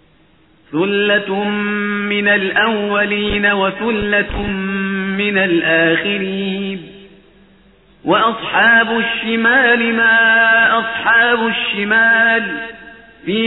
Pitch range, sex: 195-225 Hz, male